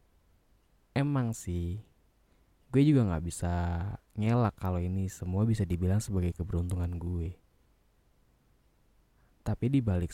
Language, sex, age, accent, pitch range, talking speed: Indonesian, male, 20-39, native, 80-100 Hz, 100 wpm